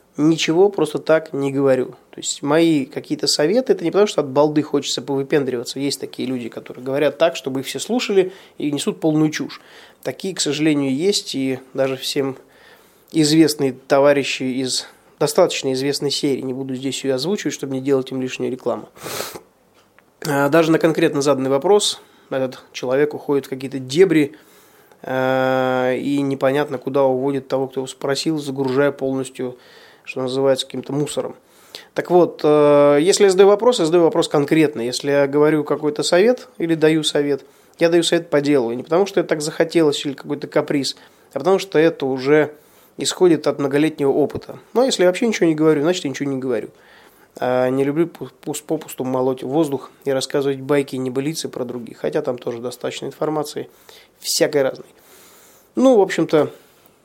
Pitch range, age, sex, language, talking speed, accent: 135-160 Hz, 20-39, male, Russian, 170 wpm, native